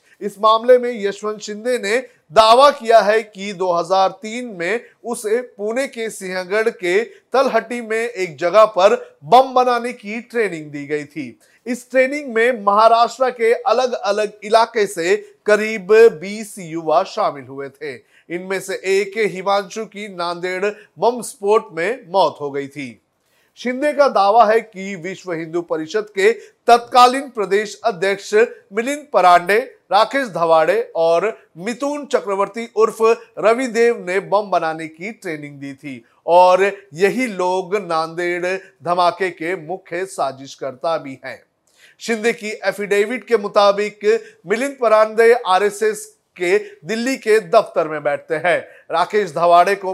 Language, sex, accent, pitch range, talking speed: Hindi, male, native, 185-235 Hz, 135 wpm